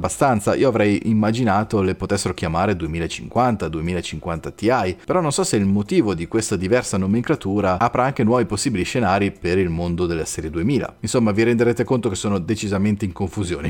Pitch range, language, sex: 95-125 Hz, Italian, male